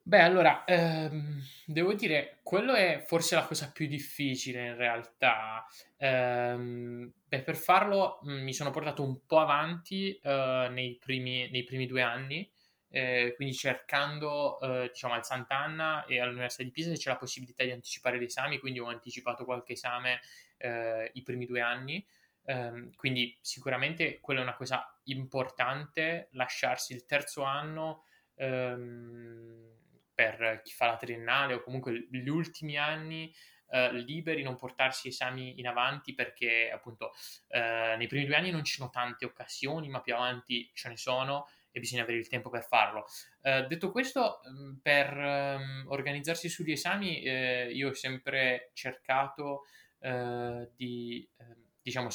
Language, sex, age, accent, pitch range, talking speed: Italian, male, 20-39, native, 125-145 Hz, 150 wpm